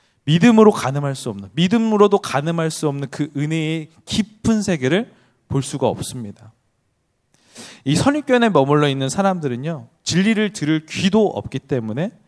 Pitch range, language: 125-170 Hz, Korean